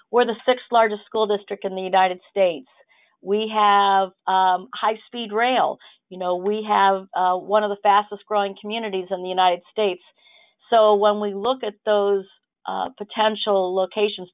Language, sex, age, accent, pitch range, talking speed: English, female, 50-69, American, 190-225 Hz, 165 wpm